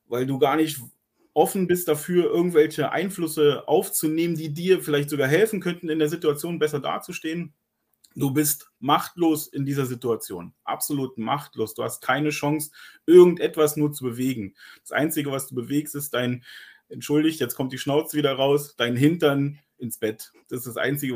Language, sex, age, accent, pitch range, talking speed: German, male, 30-49, German, 115-155 Hz, 165 wpm